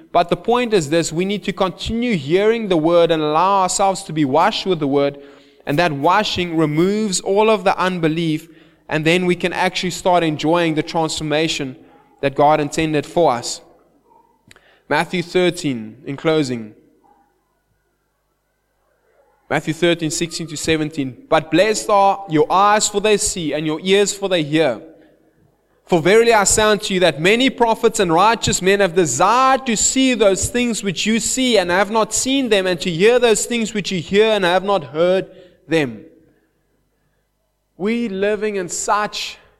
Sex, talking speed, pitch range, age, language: male, 165 wpm, 160-210 Hz, 20-39, English